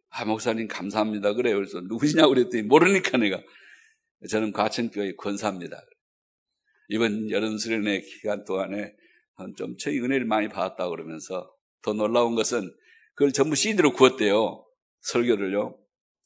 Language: Korean